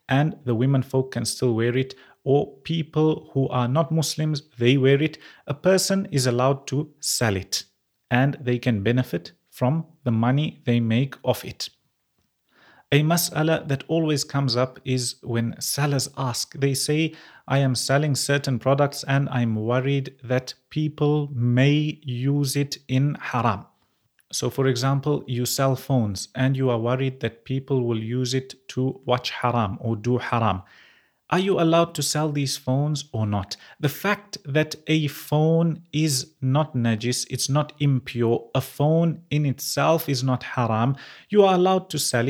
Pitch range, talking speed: 125-155 Hz, 165 wpm